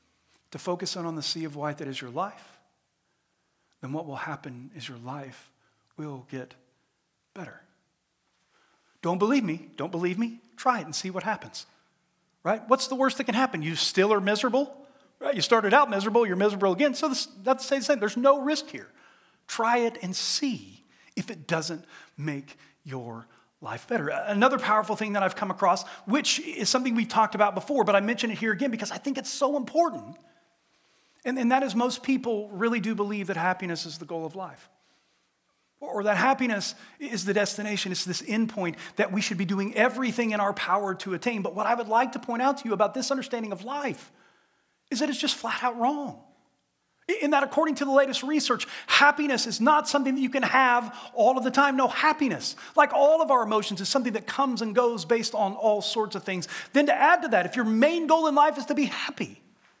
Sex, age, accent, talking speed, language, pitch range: male, 40-59, American, 210 wpm, English, 185-265 Hz